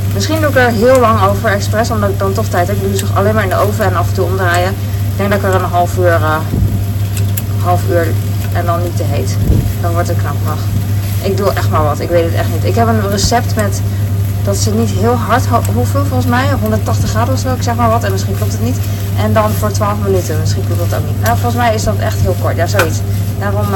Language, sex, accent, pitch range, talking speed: Dutch, female, Dutch, 100-105 Hz, 270 wpm